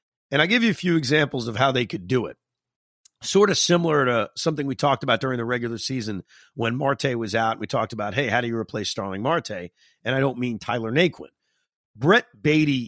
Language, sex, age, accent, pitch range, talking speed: English, male, 40-59, American, 110-145 Hz, 220 wpm